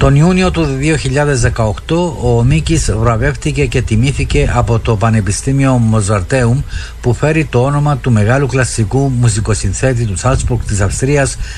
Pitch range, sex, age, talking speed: 105-140 Hz, male, 50-69, 130 wpm